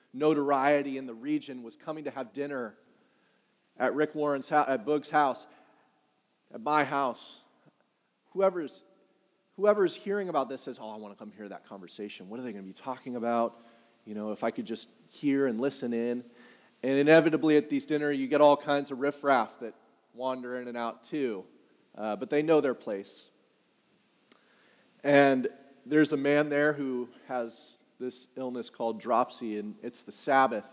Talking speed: 175 wpm